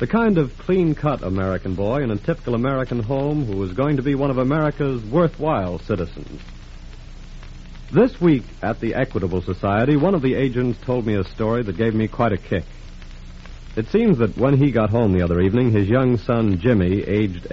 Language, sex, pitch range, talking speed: English, male, 95-140 Hz, 190 wpm